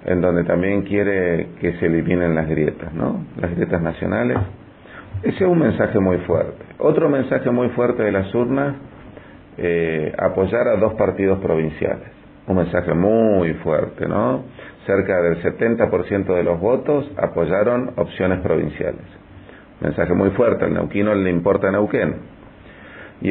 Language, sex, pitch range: Spanish, male, 85-105 Hz